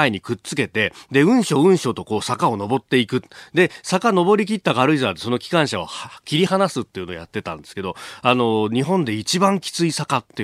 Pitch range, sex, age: 110-180 Hz, male, 40-59